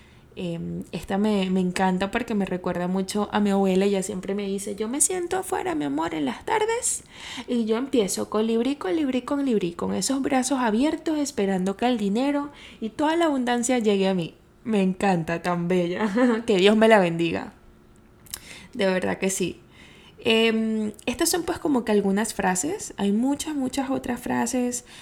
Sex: female